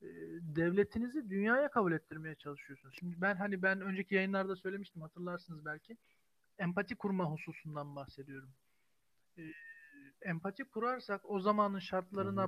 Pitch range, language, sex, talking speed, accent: 165-210 Hz, Turkish, male, 110 wpm, native